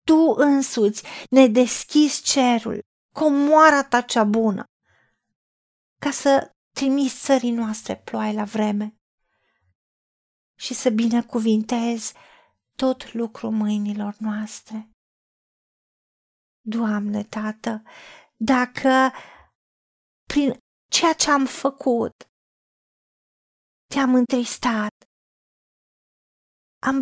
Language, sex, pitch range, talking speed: Romanian, female, 220-275 Hz, 80 wpm